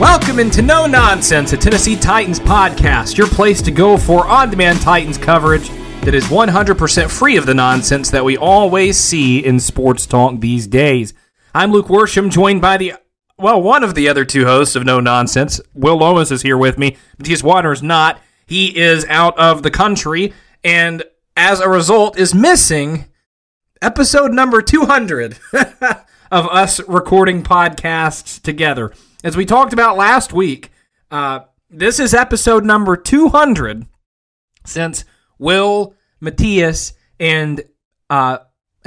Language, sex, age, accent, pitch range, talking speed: English, male, 30-49, American, 140-190 Hz, 150 wpm